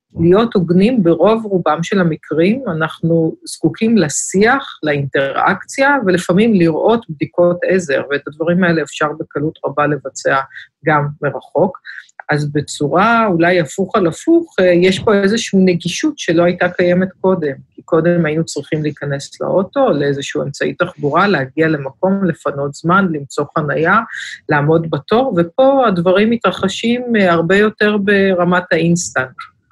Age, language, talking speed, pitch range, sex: 50-69, Hebrew, 125 wpm, 155-190 Hz, female